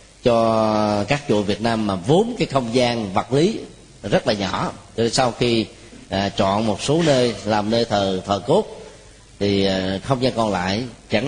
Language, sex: Vietnamese, male